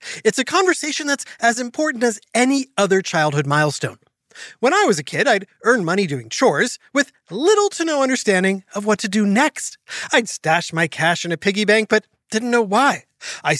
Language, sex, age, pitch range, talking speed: English, male, 30-49, 165-260 Hz, 195 wpm